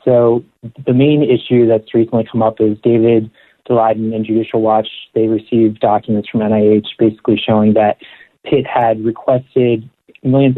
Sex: male